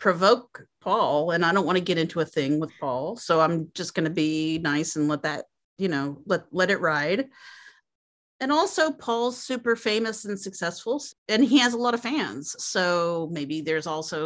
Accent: American